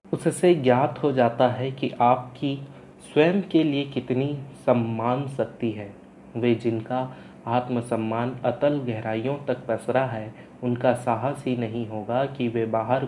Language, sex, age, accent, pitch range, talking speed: Hindi, male, 30-49, native, 115-135 Hz, 140 wpm